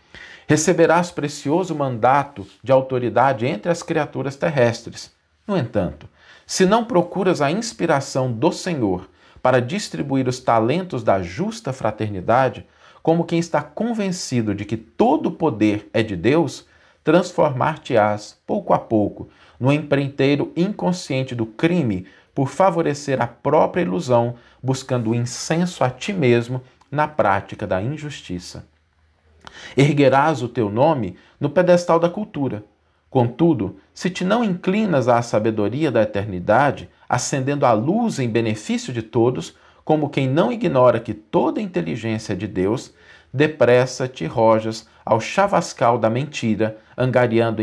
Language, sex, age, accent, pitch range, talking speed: Portuguese, male, 40-59, Brazilian, 110-160 Hz, 130 wpm